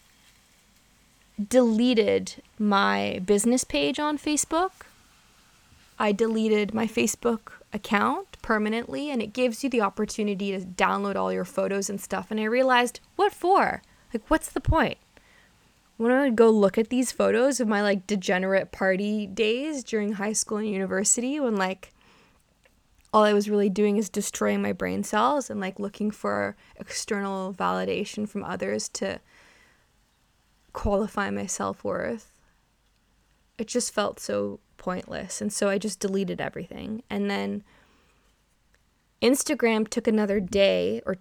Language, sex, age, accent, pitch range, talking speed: English, female, 20-39, American, 195-235 Hz, 135 wpm